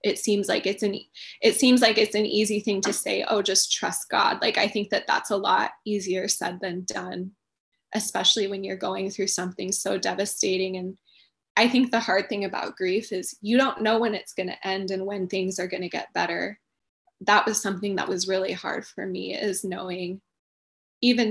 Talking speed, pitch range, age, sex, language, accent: 210 wpm, 190-210 Hz, 10-29, female, English, American